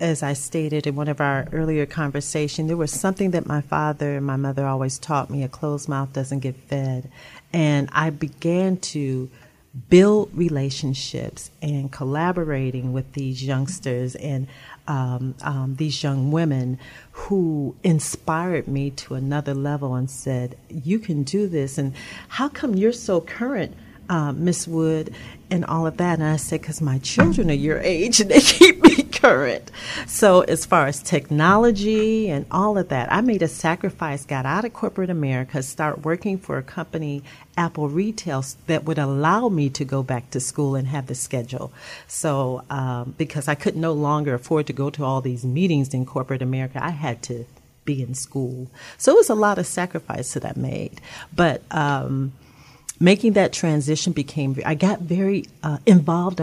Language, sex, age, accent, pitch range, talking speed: English, female, 40-59, American, 135-170 Hz, 175 wpm